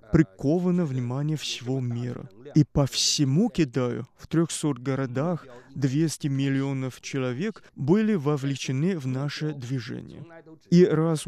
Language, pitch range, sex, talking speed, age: Russian, 130-160 Hz, male, 110 wpm, 20-39